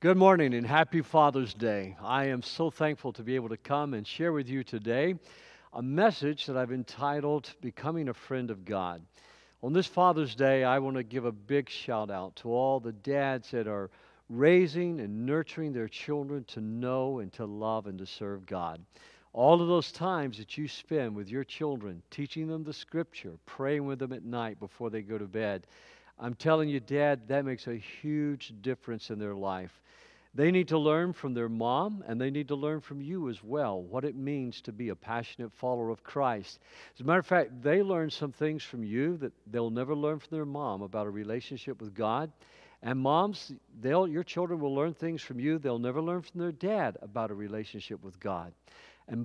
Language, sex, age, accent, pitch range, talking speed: English, male, 50-69, American, 115-155 Hz, 205 wpm